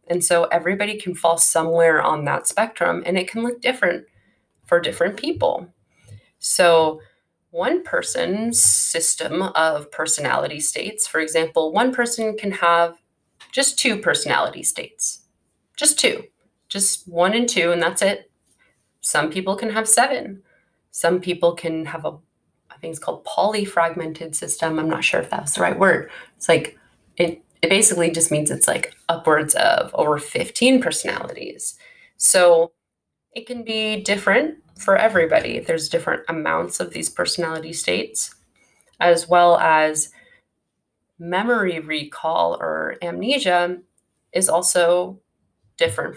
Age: 30-49